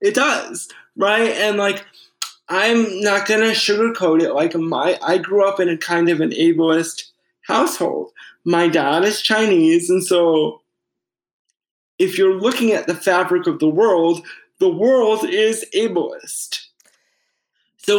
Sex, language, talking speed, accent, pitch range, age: male, English, 140 wpm, American, 180-240 Hz, 20-39